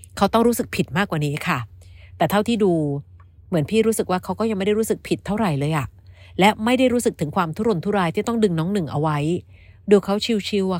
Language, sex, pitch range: Thai, female, 150-205 Hz